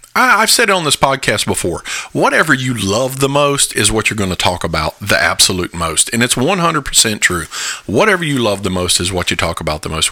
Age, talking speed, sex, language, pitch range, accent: 40-59, 220 wpm, male, English, 95-130 Hz, American